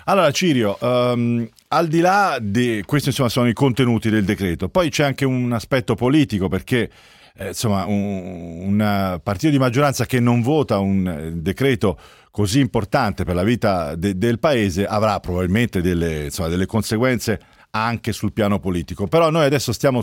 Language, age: Italian, 40-59